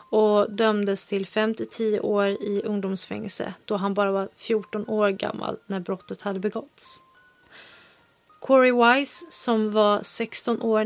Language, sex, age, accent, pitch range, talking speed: Swedish, female, 30-49, native, 200-225 Hz, 145 wpm